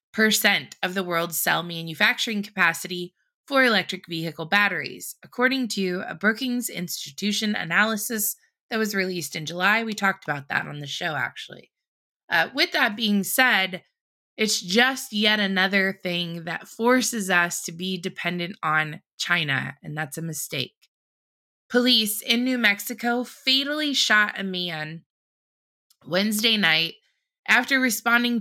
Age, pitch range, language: 20-39, 175-225 Hz, English